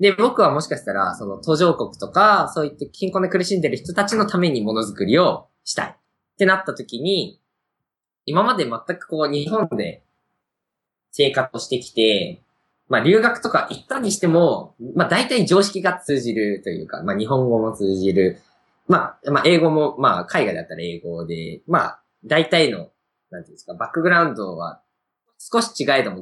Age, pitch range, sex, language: 20-39, 125-205 Hz, male, Japanese